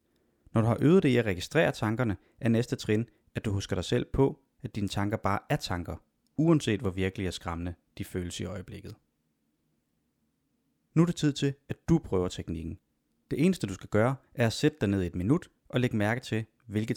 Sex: male